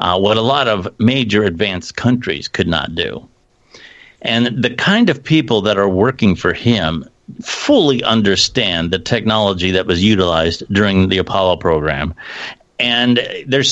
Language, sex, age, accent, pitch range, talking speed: English, male, 50-69, American, 105-135 Hz, 150 wpm